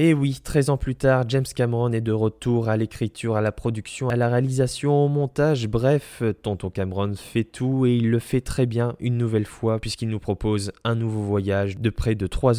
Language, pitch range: French, 105-125 Hz